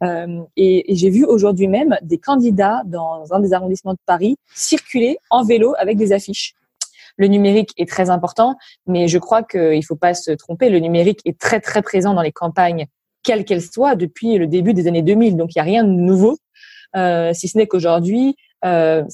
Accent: French